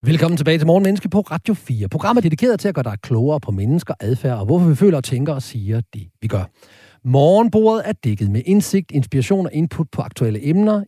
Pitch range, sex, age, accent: 115-165 Hz, male, 40-59, native